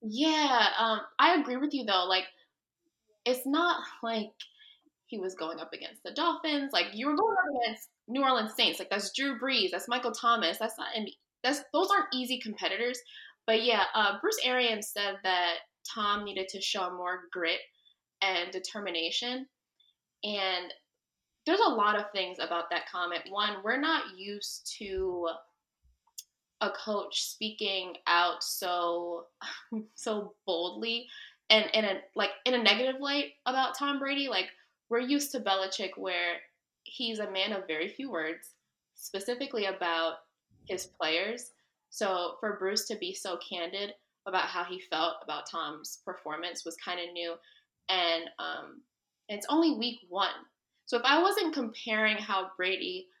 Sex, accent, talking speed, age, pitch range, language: female, American, 155 wpm, 20-39, 185-255 Hz, English